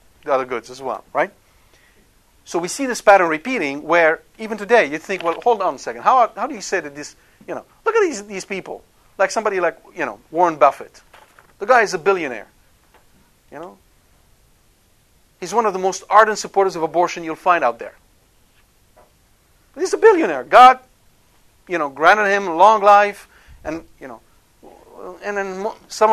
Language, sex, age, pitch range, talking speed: English, male, 50-69, 135-205 Hz, 185 wpm